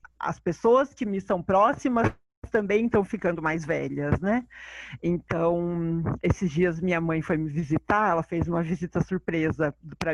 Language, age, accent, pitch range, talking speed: Portuguese, 40-59, Brazilian, 165-205 Hz, 155 wpm